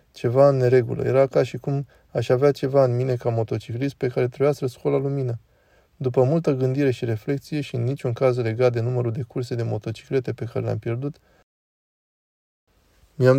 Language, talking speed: Romanian, 185 wpm